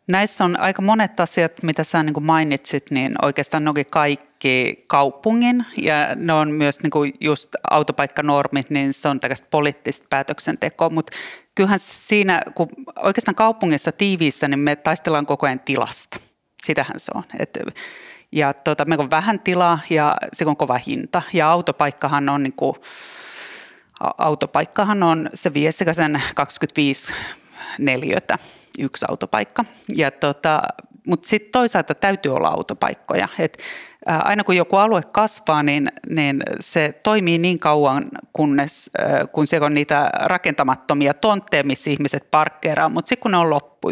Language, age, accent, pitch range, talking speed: Finnish, 30-49, native, 145-200 Hz, 140 wpm